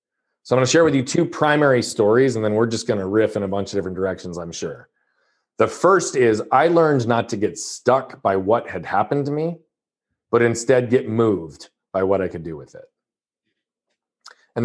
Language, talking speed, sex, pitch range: English, 215 wpm, male, 105-125 Hz